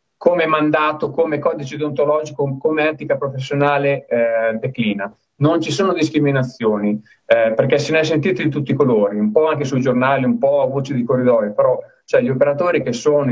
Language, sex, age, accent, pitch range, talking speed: Italian, male, 30-49, native, 120-150 Hz, 180 wpm